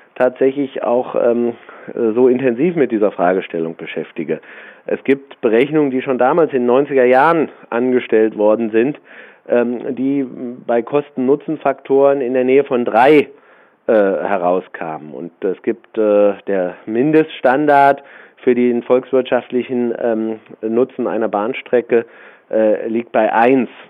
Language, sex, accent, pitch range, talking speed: German, male, German, 105-125 Hz, 125 wpm